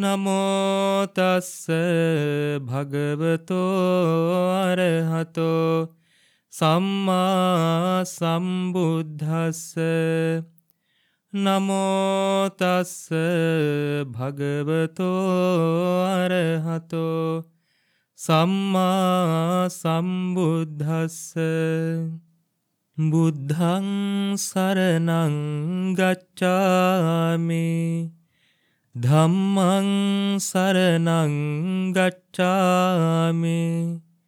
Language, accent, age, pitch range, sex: English, Indian, 30-49, 165-185 Hz, male